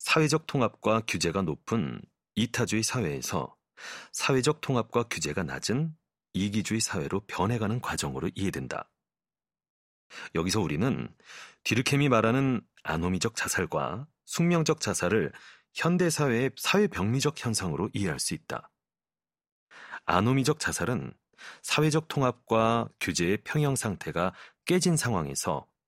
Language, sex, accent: Korean, male, native